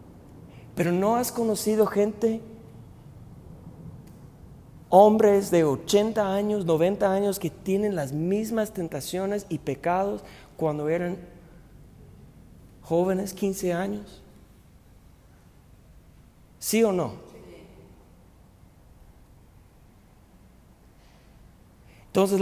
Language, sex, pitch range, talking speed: Spanish, male, 145-205 Hz, 70 wpm